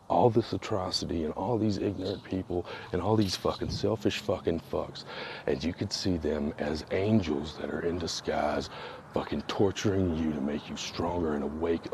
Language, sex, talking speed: English, male, 175 wpm